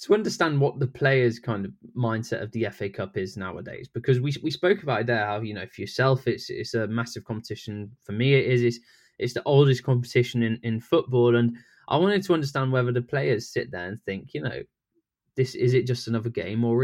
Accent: British